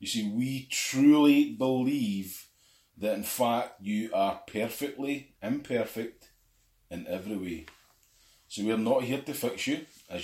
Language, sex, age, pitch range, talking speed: English, male, 30-49, 100-135 Hz, 135 wpm